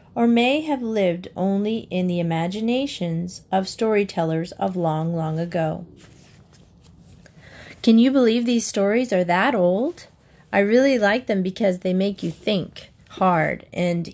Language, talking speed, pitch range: English, 140 wpm, 170-200 Hz